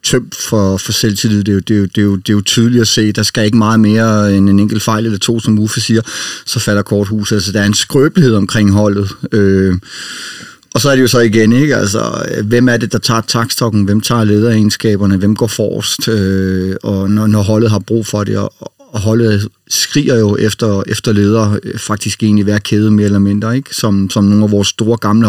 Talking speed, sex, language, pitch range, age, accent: 210 wpm, male, Danish, 105-120 Hz, 30-49, native